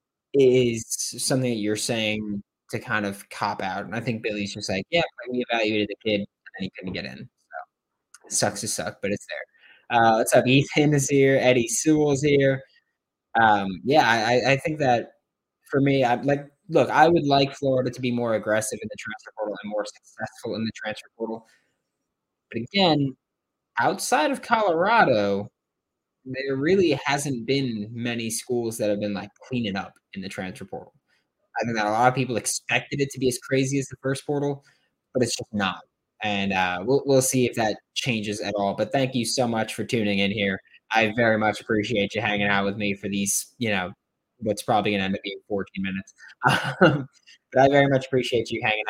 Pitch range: 105-130 Hz